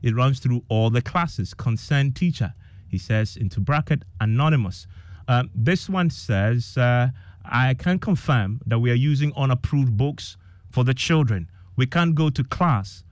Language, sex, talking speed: English, male, 160 wpm